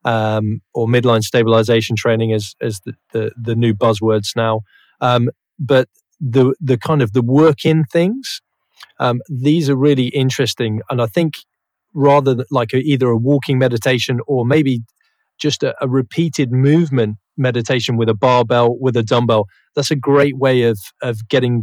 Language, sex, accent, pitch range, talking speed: English, male, British, 115-135 Hz, 165 wpm